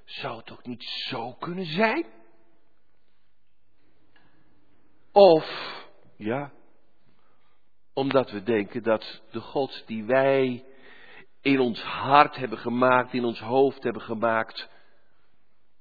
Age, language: 50-69, Dutch